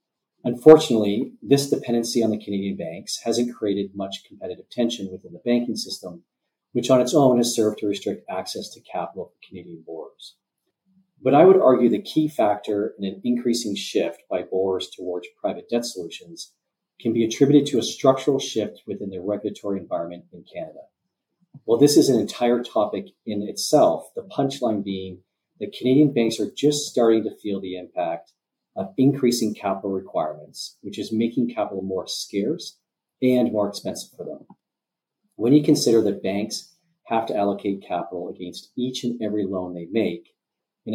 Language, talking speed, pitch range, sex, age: English, 165 wpm, 100-130 Hz, male, 40-59